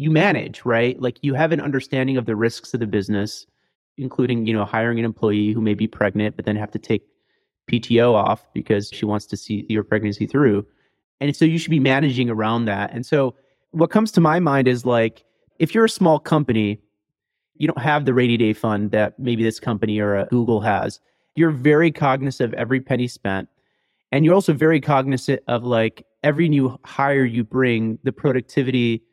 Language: English